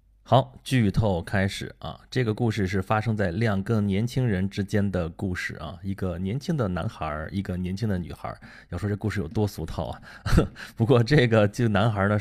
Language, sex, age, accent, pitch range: Chinese, male, 30-49, native, 95-115 Hz